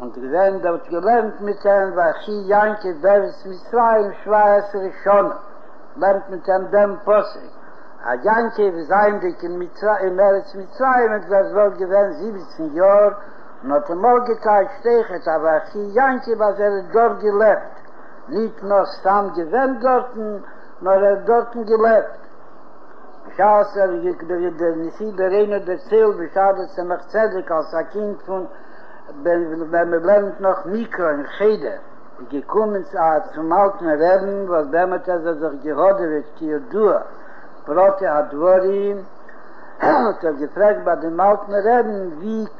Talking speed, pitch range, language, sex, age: 100 wpm, 185-210 Hz, Hebrew, male, 60-79